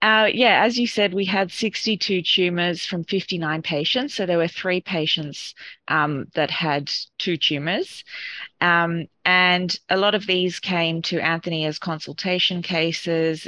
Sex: female